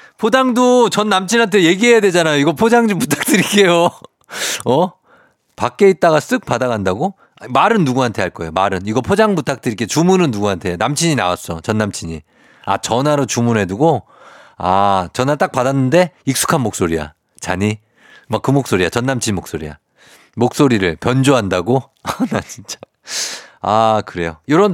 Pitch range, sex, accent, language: 100-165 Hz, male, native, Korean